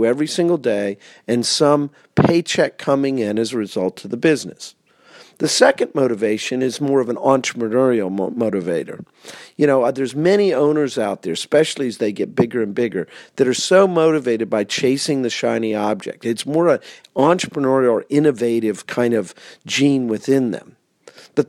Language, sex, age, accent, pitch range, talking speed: English, male, 50-69, American, 120-150 Hz, 160 wpm